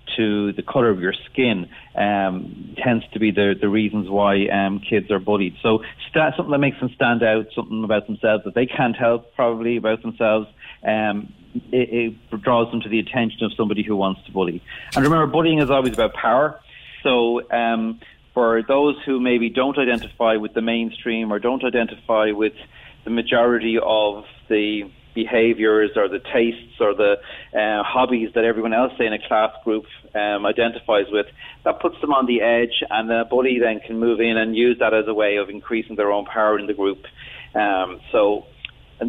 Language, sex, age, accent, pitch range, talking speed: English, male, 40-59, Irish, 105-120 Hz, 190 wpm